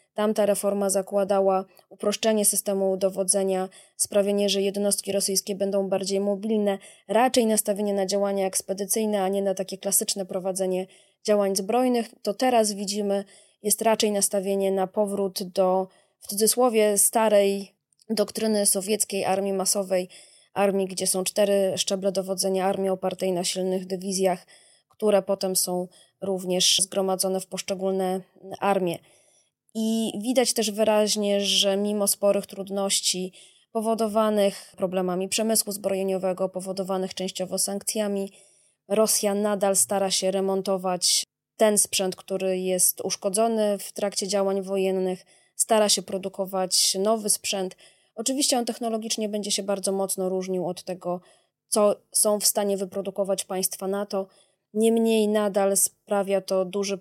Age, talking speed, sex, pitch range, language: 20-39, 125 wpm, female, 190-210 Hz, Polish